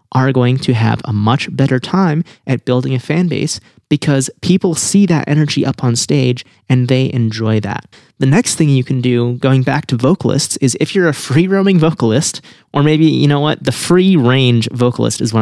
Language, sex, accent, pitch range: English, male, American, 120-155 Hz